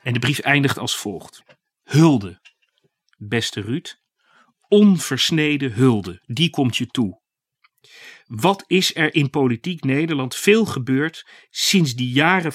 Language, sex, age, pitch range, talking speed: Dutch, male, 40-59, 115-160 Hz, 125 wpm